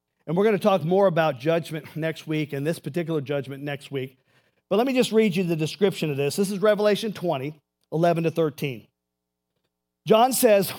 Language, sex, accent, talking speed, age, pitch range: English, male, American, 195 wpm, 50-69, 150-195 Hz